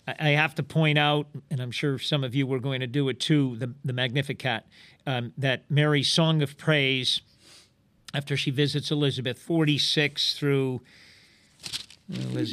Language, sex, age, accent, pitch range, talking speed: English, male, 50-69, American, 140-170 Hz, 160 wpm